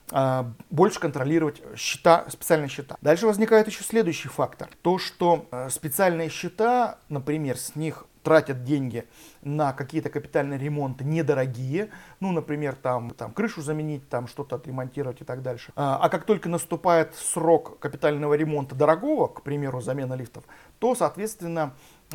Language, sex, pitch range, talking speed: Russian, male, 130-165 Hz, 135 wpm